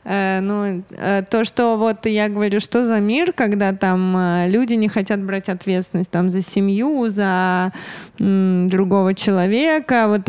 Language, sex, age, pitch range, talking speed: Russian, female, 20-39, 185-225 Hz, 140 wpm